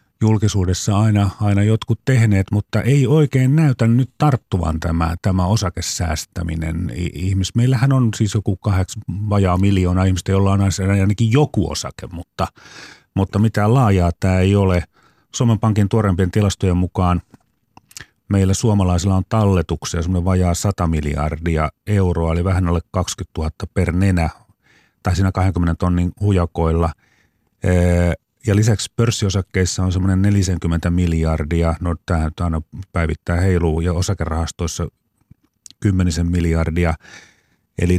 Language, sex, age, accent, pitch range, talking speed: Finnish, male, 30-49, native, 85-105 Hz, 125 wpm